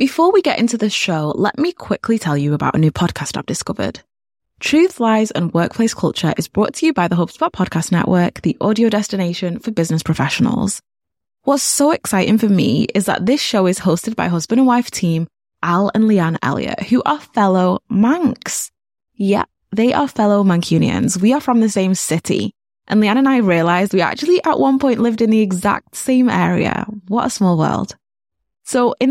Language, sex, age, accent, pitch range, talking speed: English, female, 10-29, British, 175-240 Hz, 195 wpm